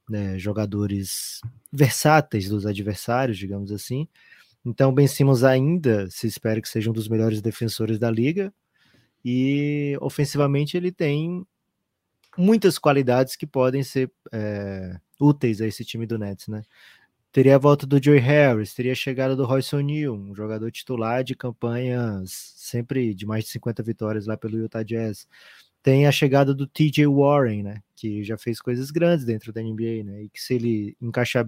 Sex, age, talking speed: male, 20-39, 165 wpm